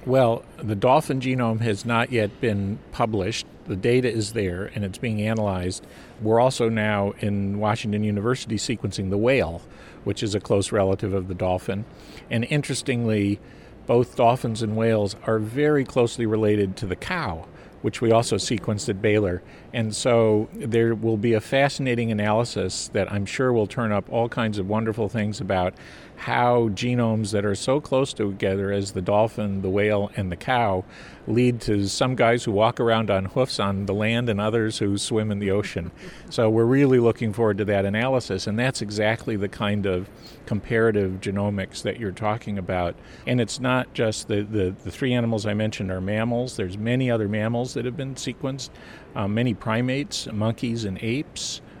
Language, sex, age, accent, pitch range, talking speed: English, male, 50-69, American, 100-120 Hz, 175 wpm